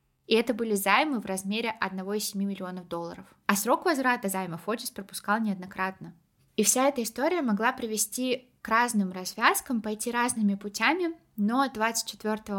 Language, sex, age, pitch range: Russian, female, 20-39, 195-245 Hz